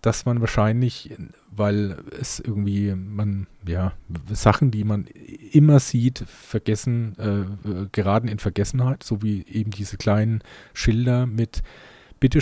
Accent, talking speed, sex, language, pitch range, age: German, 125 wpm, male, German, 105-125 Hz, 40-59